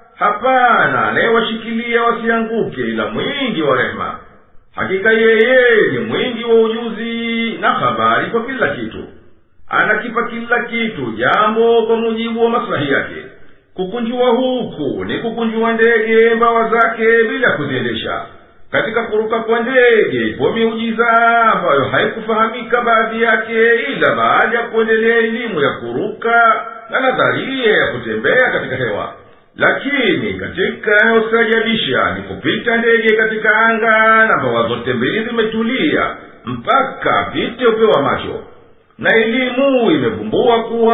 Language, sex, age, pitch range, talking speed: Swahili, male, 50-69, 225-235 Hz, 115 wpm